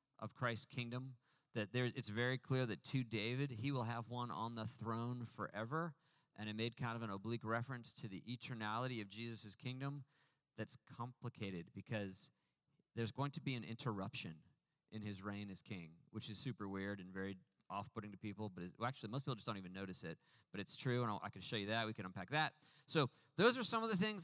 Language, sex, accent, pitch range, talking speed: English, male, American, 110-140 Hz, 220 wpm